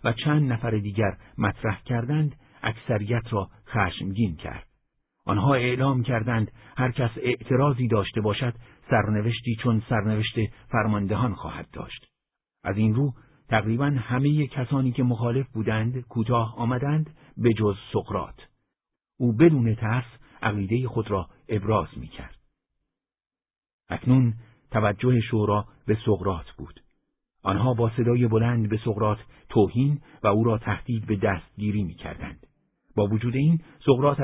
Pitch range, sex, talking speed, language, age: 105-125 Hz, male, 125 wpm, Persian, 50-69